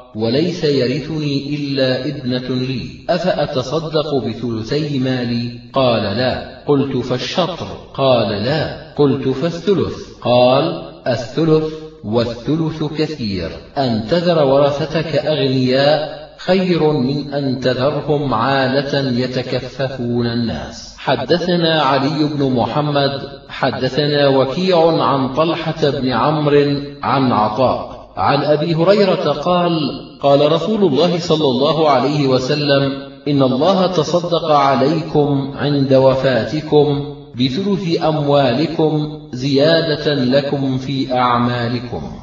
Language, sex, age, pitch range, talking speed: Arabic, male, 40-59, 130-155 Hz, 95 wpm